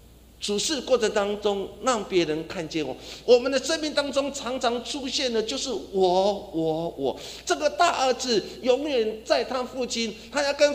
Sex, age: male, 50-69